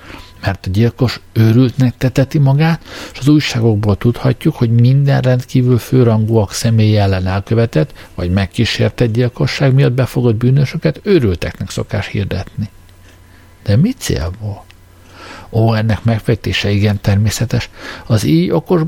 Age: 60-79